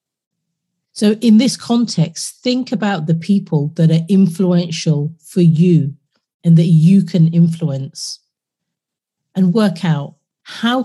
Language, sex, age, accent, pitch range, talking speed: English, female, 40-59, British, 160-195 Hz, 120 wpm